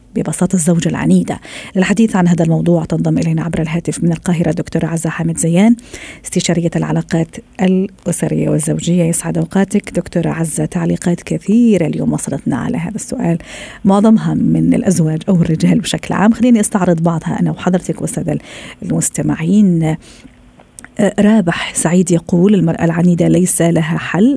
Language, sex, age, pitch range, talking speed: Arabic, female, 40-59, 165-195 Hz, 135 wpm